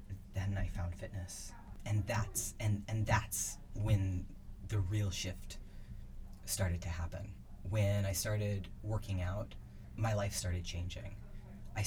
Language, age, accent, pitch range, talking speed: English, 30-49, American, 95-105 Hz, 130 wpm